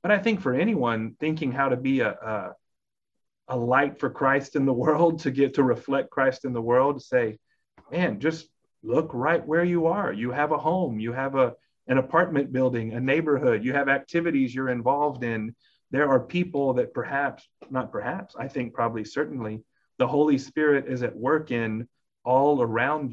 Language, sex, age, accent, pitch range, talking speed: English, male, 30-49, American, 120-140 Hz, 185 wpm